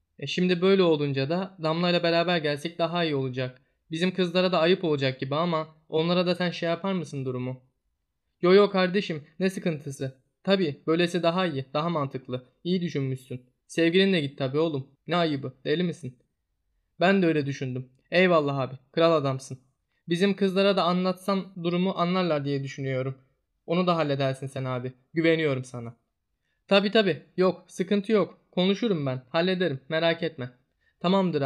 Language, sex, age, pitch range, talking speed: Turkish, male, 20-39, 130-180 Hz, 155 wpm